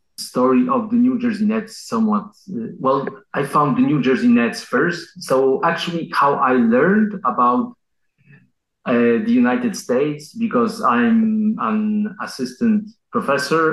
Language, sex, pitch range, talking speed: English, male, 160-235 Hz, 130 wpm